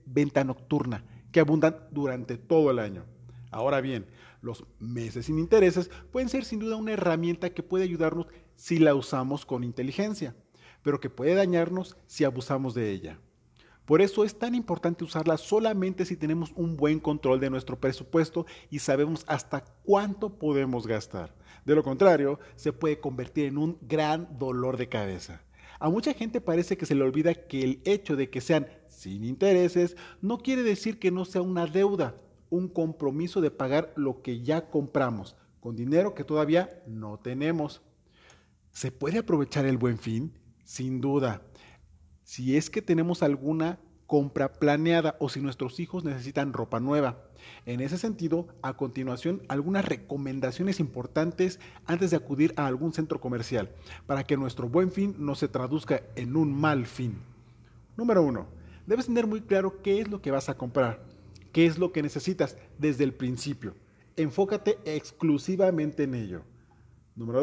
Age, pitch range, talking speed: 40-59, 125-170 Hz, 160 wpm